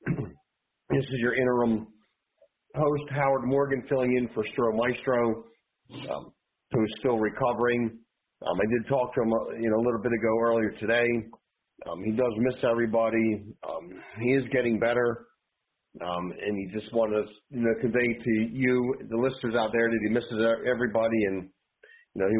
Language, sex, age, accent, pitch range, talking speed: English, male, 40-59, American, 110-125 Hz, 170 wpm